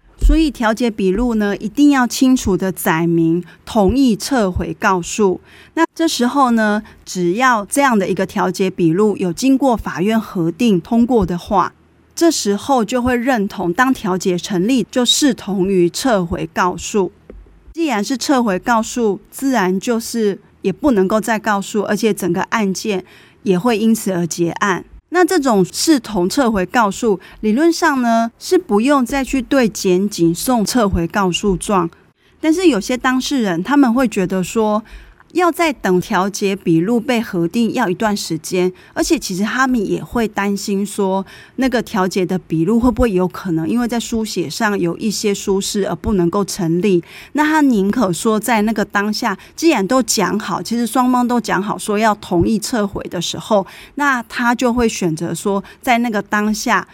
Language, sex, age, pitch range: Chinese, female, 20-39, 185-245 Hz